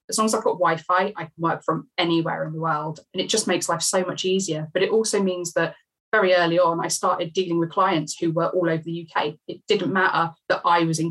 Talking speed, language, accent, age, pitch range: 260 wpm, English, British, 20-39, 165-185 Hz